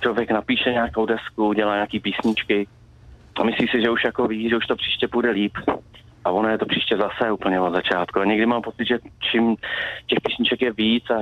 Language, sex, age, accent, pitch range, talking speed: Czech, male, 30-49, native, 105-120 Hz, 215 wpm